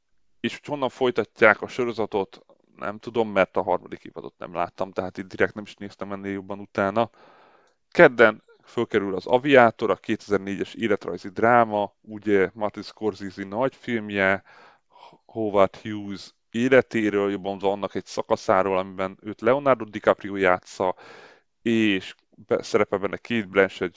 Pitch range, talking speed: 95-110 Hz, 130 wpm